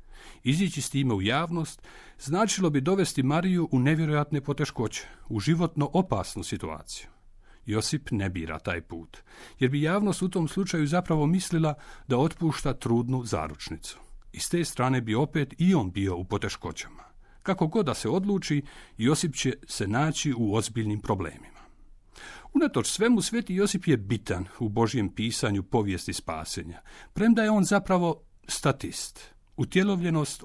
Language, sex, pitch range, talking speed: Croatian, male, 110-165 Hz, 145 wpm